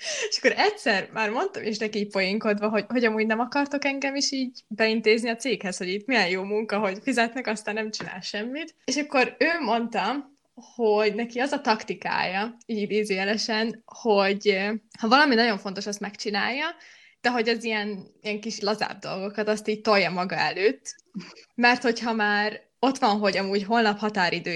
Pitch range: 200-235 Hz